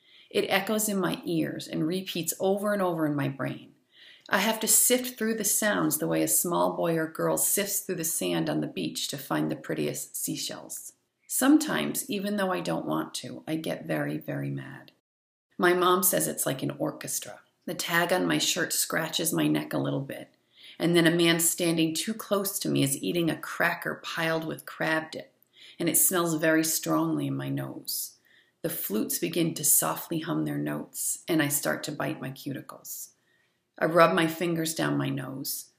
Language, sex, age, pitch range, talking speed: English, female, 40-59, 155-200 Hz, 195 wpm